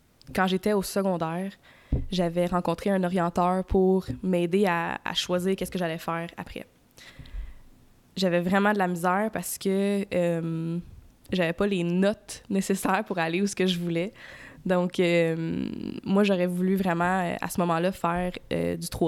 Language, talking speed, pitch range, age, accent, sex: French, 155 wpm, 170-195 Hz, 20-39, Canadian, female